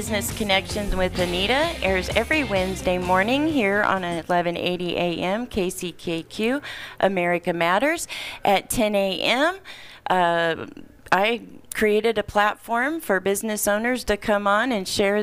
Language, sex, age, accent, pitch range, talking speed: English, female, 40-59, American, 155-195 Hz, 120 wpm